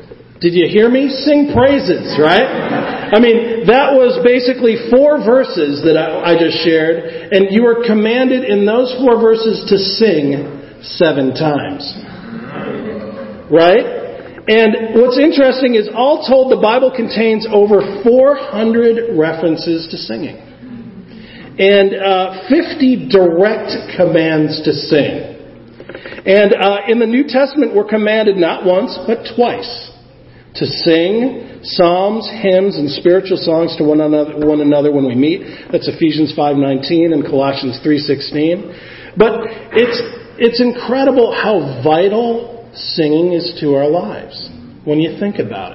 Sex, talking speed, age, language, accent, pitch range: male, 130 wpm, 40-59, English, American, 160-230 Hz